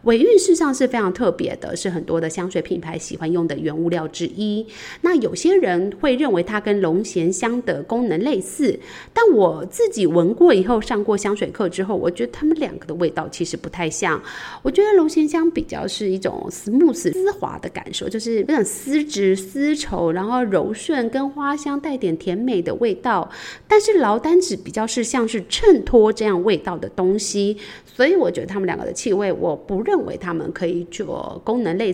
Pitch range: 180-285 Hz